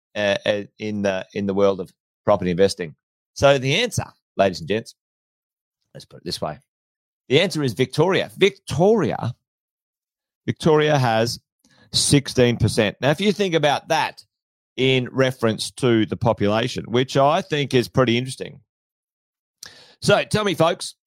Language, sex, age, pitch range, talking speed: English, male, 30-49, 110-155 Hz, 140 wpm